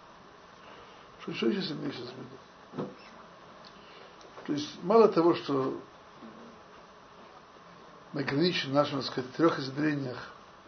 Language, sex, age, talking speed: Russian, male, 60-79, 60 wpm